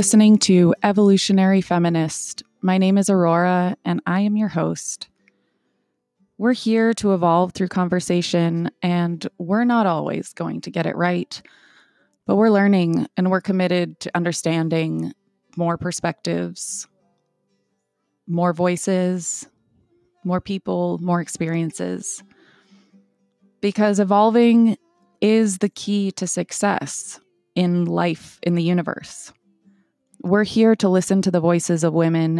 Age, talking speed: 20-39, 120 wpm